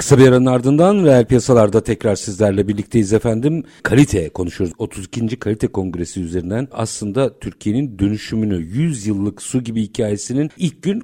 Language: Turkish